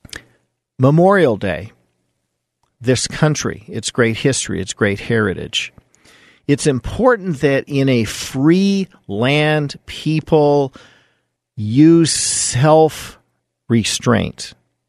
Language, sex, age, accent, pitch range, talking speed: English, male, 50-69, American, 110-140 Hz, 80 wpm